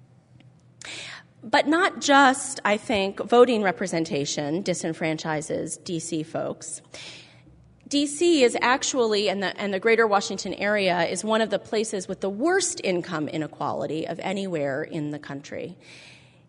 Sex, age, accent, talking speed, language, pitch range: female, 30-49, American, 125 wpm, English, 170-260 Hz